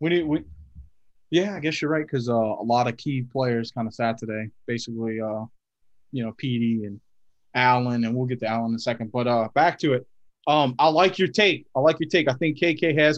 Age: 30-49